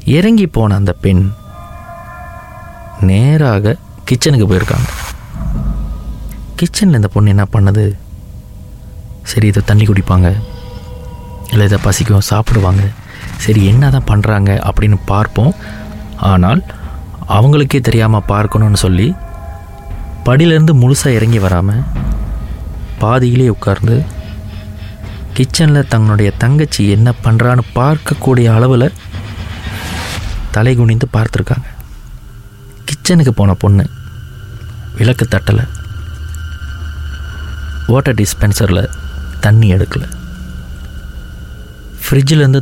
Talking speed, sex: 80 wpm, male